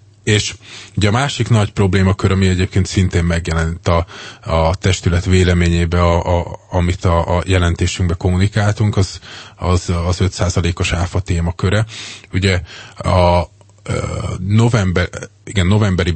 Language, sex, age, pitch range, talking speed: Hungarian, male, 20-39, 85-100 Hz, 125 wpm